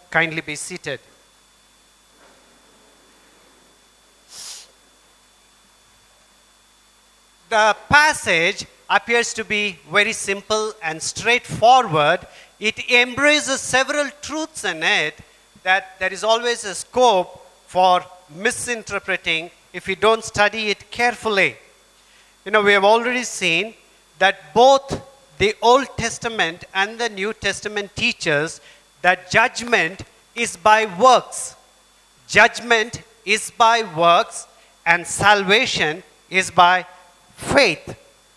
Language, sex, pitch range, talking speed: English, male, 180-240 Hz, 95 wpm